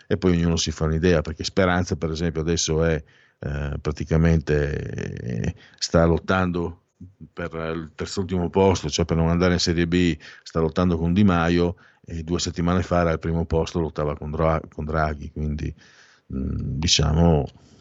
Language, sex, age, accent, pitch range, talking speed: Italian, male, 50-69, native, 85-115 Hz, 170 wpm